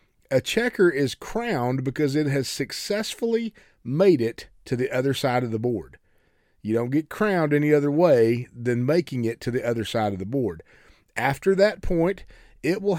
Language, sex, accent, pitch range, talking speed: English, male, American, 120-175 Hz, 180 wpm